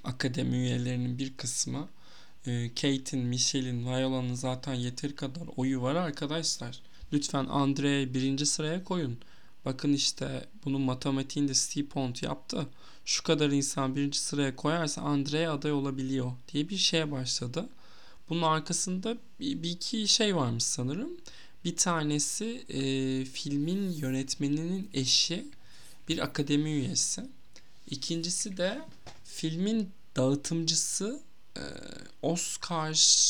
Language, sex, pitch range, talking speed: Turkish, male, 130-165 Hz, 110 wpm